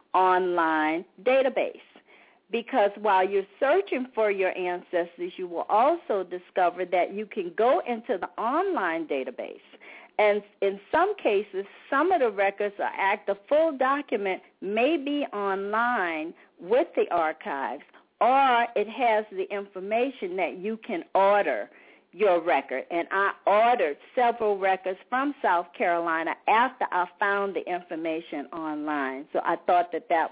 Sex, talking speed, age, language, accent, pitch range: female, 140 wpm, 50-69, English, American, 185-260 Hz